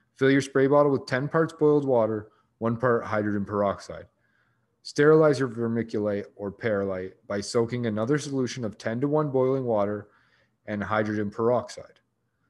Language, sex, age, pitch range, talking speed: English, male, 30-49, 105-130 Hz, 150 wpm